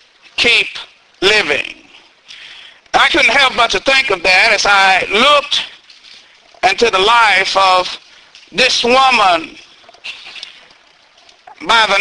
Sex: male